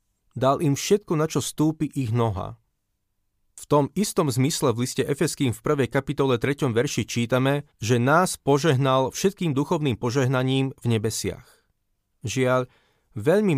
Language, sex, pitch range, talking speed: Slovak, male, 115-150 Hz, 135 wpm